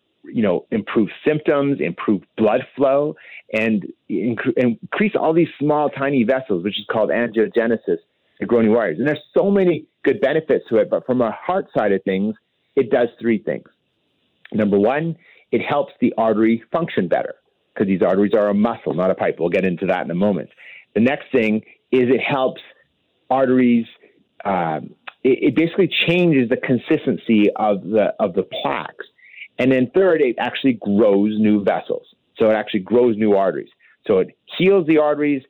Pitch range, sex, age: 110-160 Hz, male, 40-59